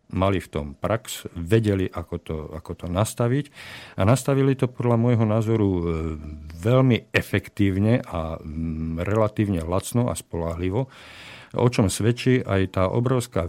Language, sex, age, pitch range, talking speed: Slovak, male, 50-69, 85-110 Hz, 125 wpm